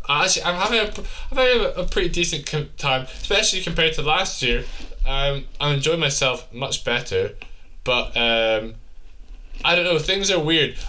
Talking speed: 160 wpm